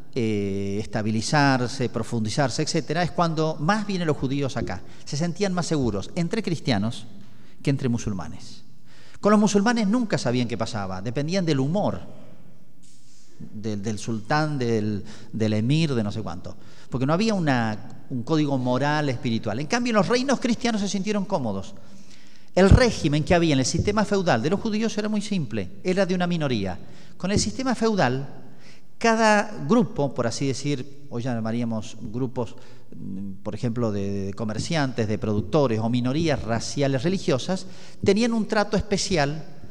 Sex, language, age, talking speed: male, Spanish, 40-59, 150 wpm